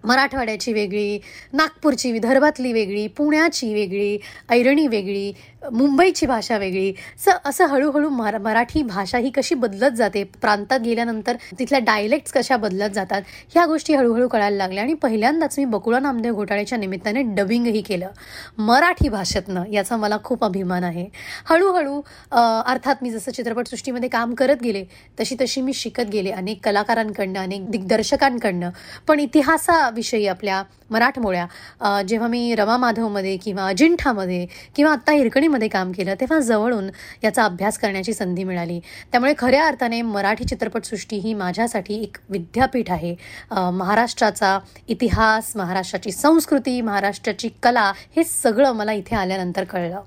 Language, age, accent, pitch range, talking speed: Marathi, 20-39, native, 200-265 Hz, 120 wpm